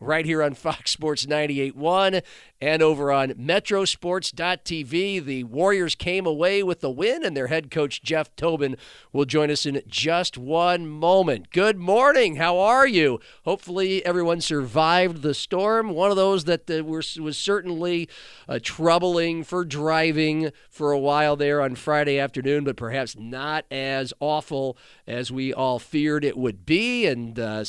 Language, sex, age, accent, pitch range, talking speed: English, male, 50-69, American, 135-180 Hz, 160 wpm